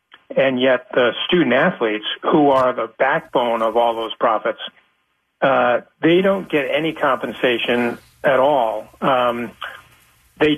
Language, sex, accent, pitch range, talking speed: English, male, American, 120-150 Hz, 130 wpm